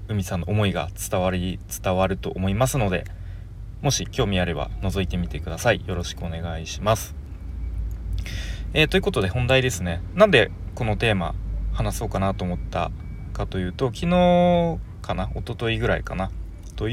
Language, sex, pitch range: Japanese, male, 90-105 Hz